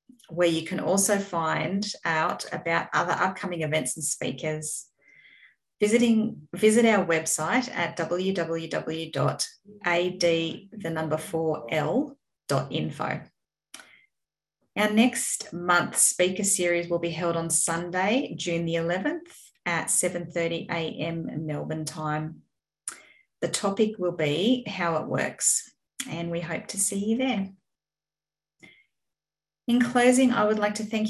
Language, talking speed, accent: English, 110 wpm, Australian